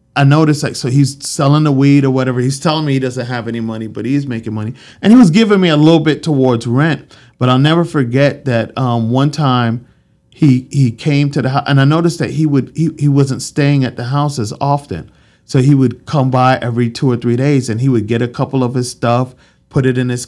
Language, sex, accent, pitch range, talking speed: English, male, American, 115-140 Hz, 250 wpm